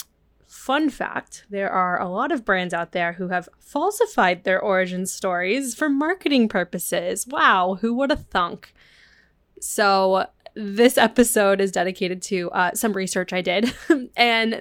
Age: 10-29